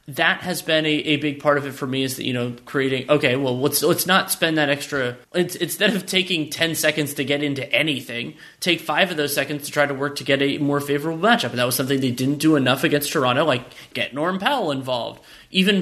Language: English